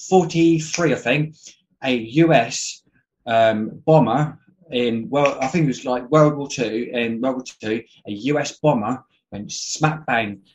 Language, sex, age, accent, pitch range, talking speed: English, male, 20-39, British, 120-155 Hz, 155 wpm